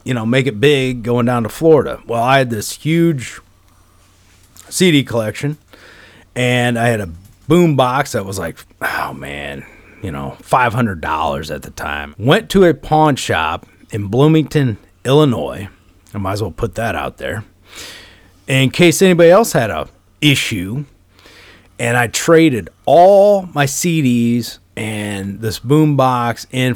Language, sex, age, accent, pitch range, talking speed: English, male, 30-49, American, 100-135 Hz, 155 wpm